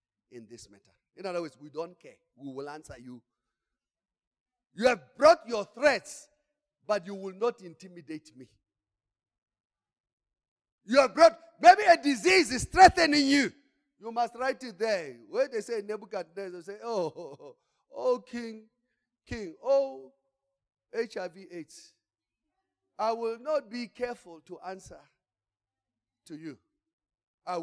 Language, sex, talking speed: English, male, 130 wpm